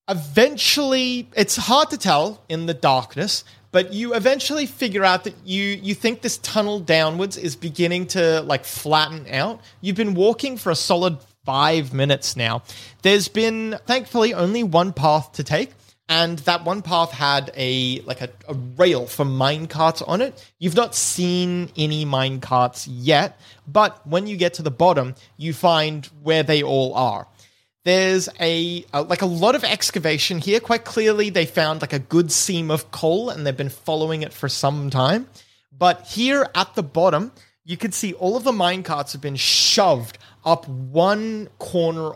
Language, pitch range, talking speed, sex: English, 145-195 Hz, 170 wpm, male